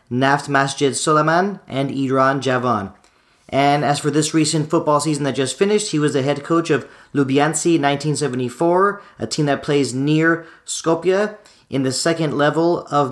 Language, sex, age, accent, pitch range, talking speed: English, male, 40-59, American, 135-160 Hz, 160 wpm